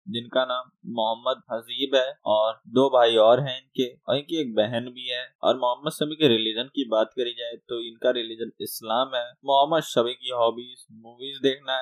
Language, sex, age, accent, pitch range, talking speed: Hindi, male, 10-29, native, 115-140 Hz, 190 wpm